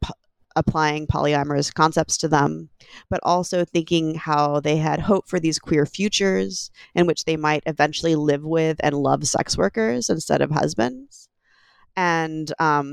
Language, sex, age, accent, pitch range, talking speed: English, female, 20-39, American, 140-175 Hz, 150 wpm